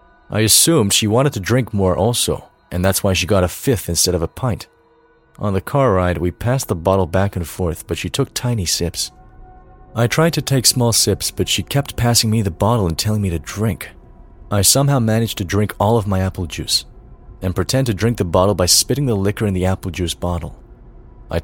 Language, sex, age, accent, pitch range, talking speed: English, male, 30-49, American, 90-115 Hz, 220 wpm